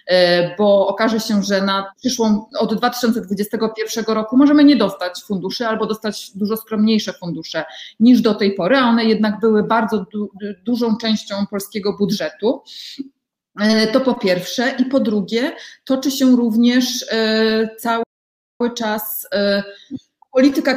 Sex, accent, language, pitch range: female, native, Polish, 210-245 Hz